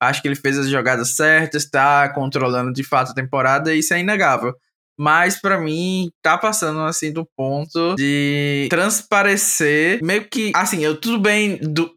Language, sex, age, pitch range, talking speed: Portuguese, male, 10-29, 145-175 Hz, 170 wpm